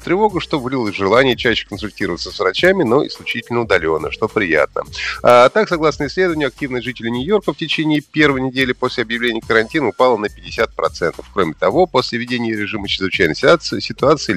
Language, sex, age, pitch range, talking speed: Russian, male, 30-49, 105-155 Hz, 160 wpm